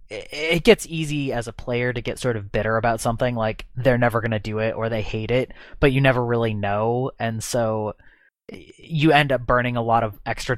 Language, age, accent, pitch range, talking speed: English, 20-39, American, 110-130 Hz, 220 wpm